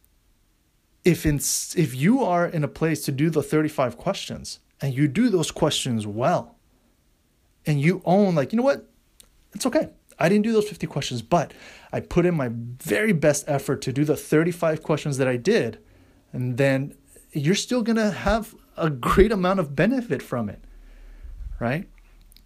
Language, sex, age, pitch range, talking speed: English, male, 30-49, 135-175 Hz, 175 wpm